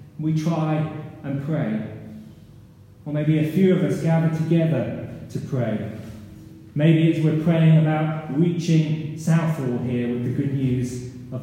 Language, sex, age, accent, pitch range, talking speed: English, male, 30-49, British, 120-165 Hz, 140 wpm